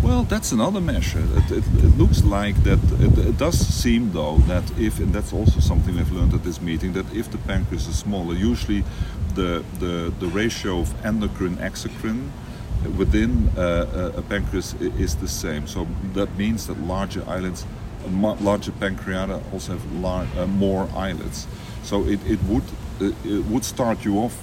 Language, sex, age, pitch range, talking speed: English, male, 50-69, 85-100 Hz, 175 wpm